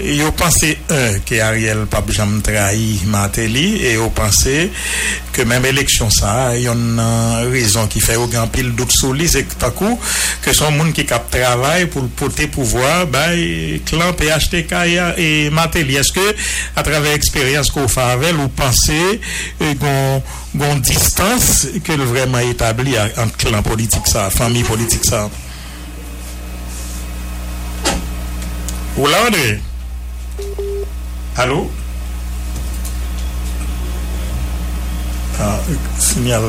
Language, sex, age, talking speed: English, male, 60-79, 115 wpm